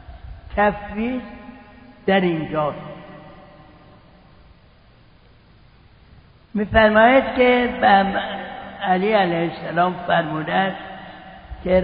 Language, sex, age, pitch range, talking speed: Persian, male, 60-79, 175-220 Hz, 55 wpm